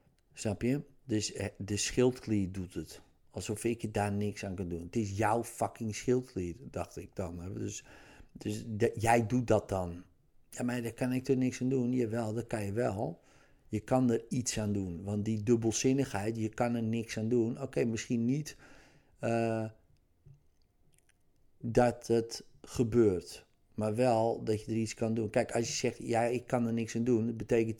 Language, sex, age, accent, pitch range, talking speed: Dutch, male, 50-69, Dutch, 110-130 Hz, 190 wpm